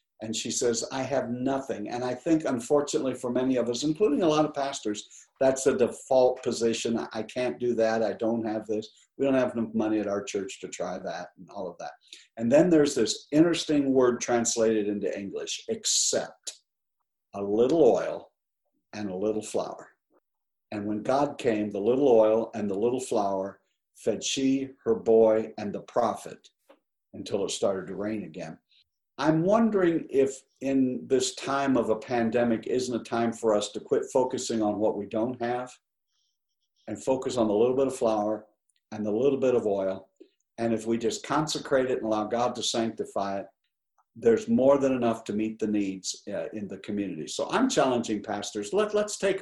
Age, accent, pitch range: 60-79, American, 110-135 Hz